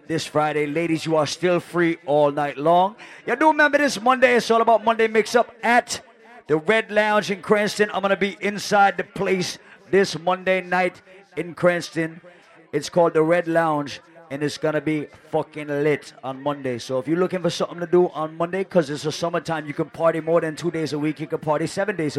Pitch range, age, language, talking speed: 145-175 Hz, 30-49, English, 215 wpm